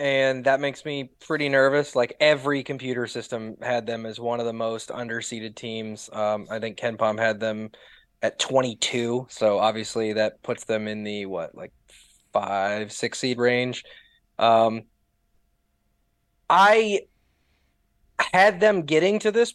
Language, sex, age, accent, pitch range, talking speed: English, male, 20-39, American, 115-160 Hz, 145 wpm